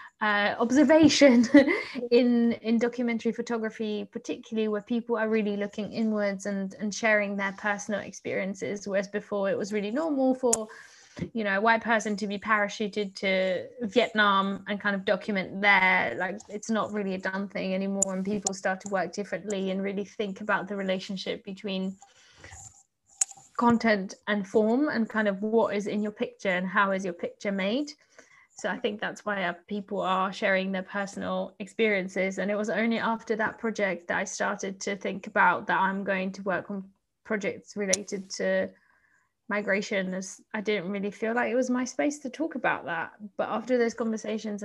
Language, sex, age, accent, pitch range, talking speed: English, female, 20-39, British, 195-225 Hz, 175 wpm